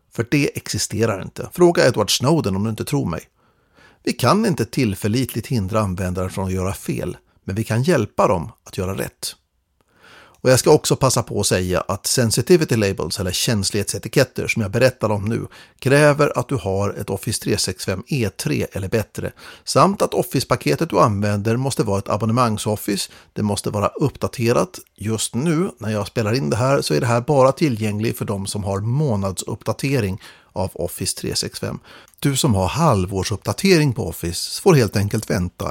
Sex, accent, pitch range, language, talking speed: male, native, 100-130 Hz, Swedish, 175 wpm